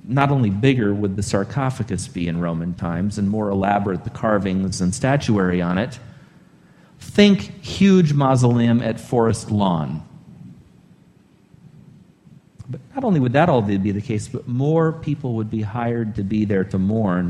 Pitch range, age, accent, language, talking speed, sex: 100-140 Hz, 40-59, American, English, 155 wpm, male